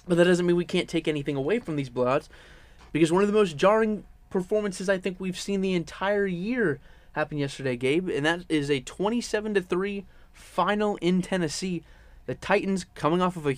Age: 20-39